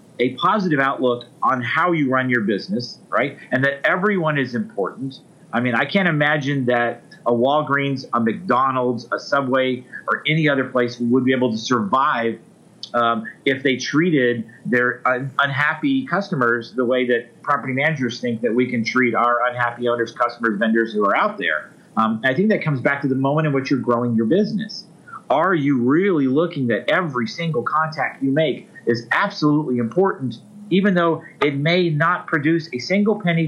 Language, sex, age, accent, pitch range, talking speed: English, male, 40-59, American, 125-165 Hz, 175 wpm